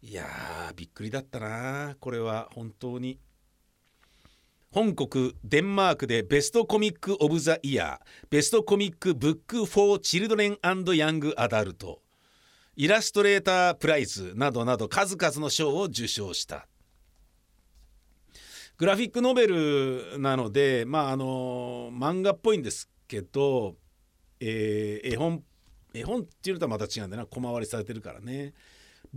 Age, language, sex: 50-69, Japanese, male